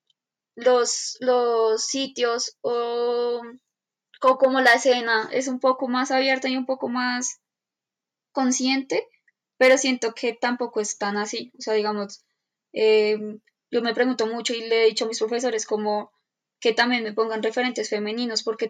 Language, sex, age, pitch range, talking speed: Spanish, female, 10-29, 215-250 Hz, 155 wpm